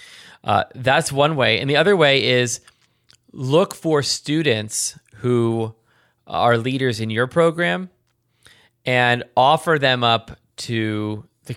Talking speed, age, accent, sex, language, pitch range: 125 wpm, 20-39, American, male, English, 110-130 Hz